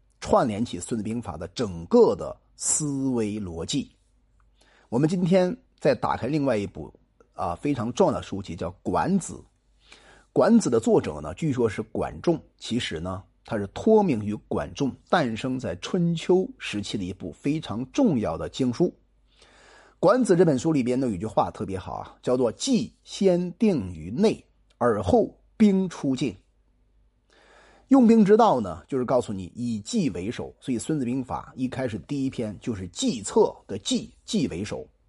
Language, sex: Chinese, male